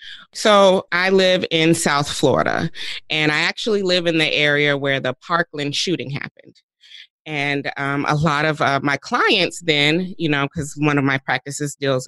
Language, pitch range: English, 135-165 Hz